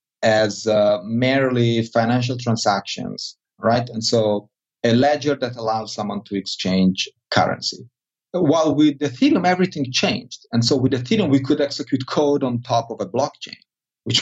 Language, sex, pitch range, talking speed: English, male, 110-140 Hz, 150 wpm